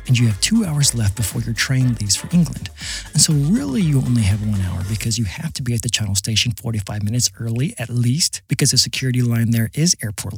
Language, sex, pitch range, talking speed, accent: English, male, 110-140 Hz, 235 wpm, American